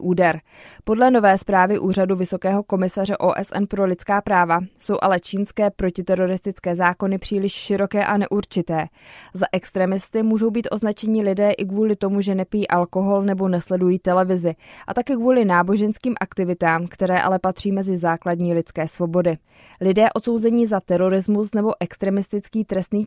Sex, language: female, Czech